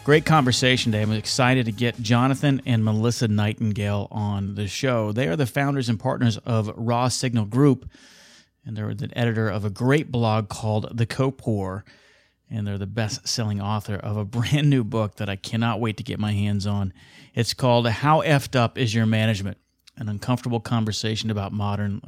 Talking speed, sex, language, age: 180 wpm, male, English, 30-49